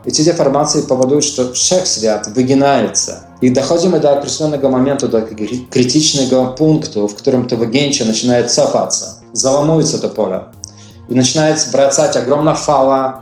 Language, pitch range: Polish, 115-140 Hz